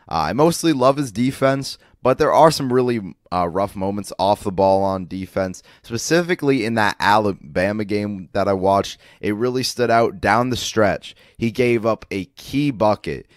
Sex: male